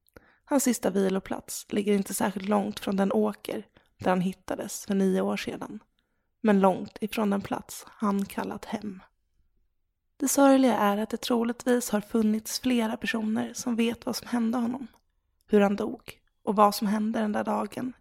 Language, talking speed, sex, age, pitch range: Swedish, 170 wpm, female, 20-39, 205-240 Hz